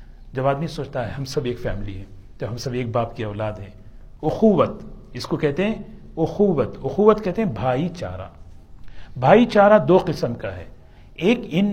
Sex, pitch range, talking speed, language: male, 115-180 Hz, 185 wpm, Urdu